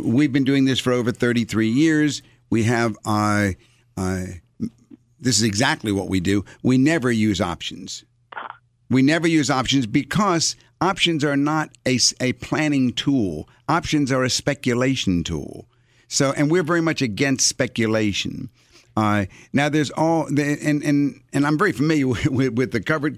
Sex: male